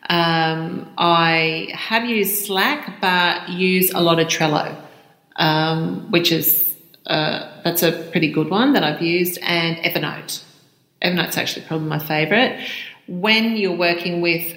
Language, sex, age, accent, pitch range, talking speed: English, female, 40-59, Australian, 165-185 Hz, 140 wpm